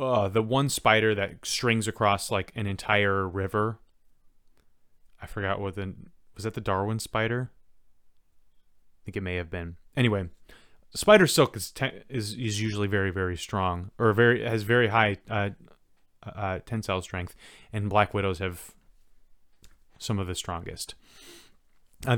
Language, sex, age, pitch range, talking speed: English, male, 30-49, 95-115 Hz, 145 wpm